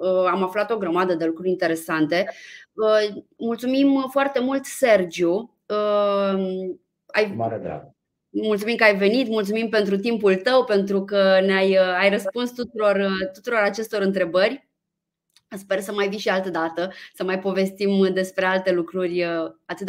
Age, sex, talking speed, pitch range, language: 20-39, female, 135 wpm, 190-225 Hz, Romanian